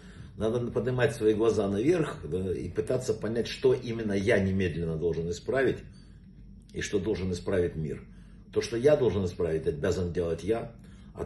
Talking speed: 155 wpm